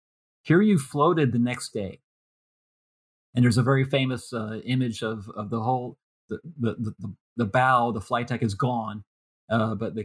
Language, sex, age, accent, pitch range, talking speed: English, male, 30-49, American, 110-125 Hz, 180 wpm